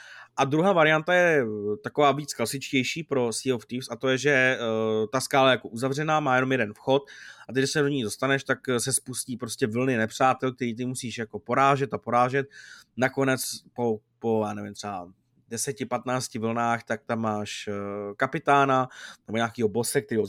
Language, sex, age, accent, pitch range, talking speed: Czech, male, 20-39, native, 115-135 Hz, 175 wpm